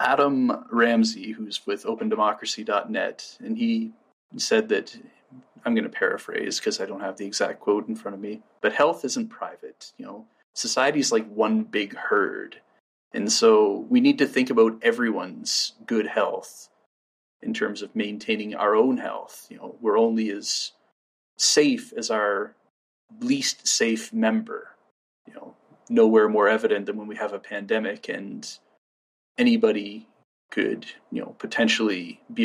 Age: 30-49